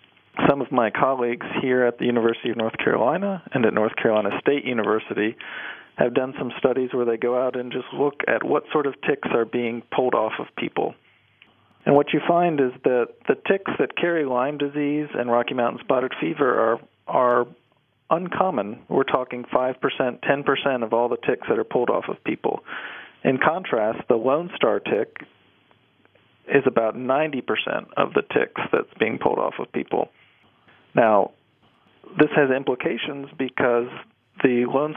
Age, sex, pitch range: 40-59, male, 115-140 Hz